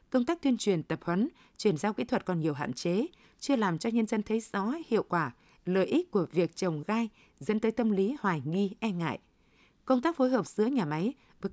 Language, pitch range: Vietnamese, 185-235 Hz